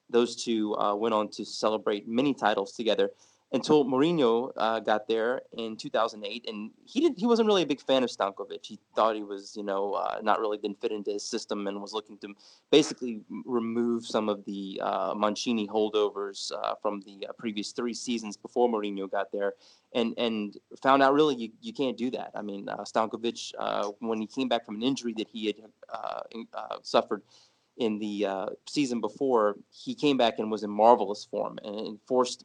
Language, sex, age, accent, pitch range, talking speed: English, male, 20-39, American, 105-120 Hz, 200 wpm